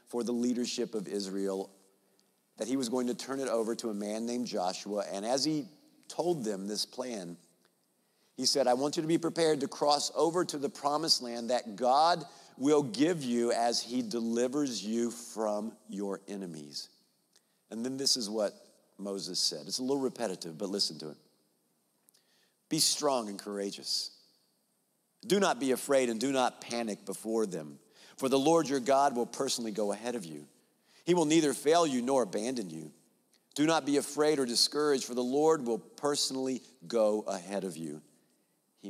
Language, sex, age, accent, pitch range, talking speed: English, male, 50-69, American, 100-135 Hz, 180 wpm